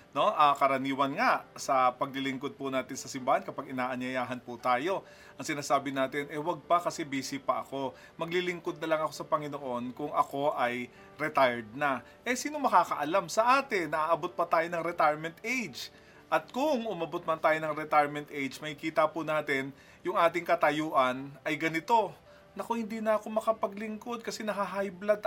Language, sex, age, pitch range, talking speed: Filipino, male, 30-49, 145-210 Hz, 165 wpm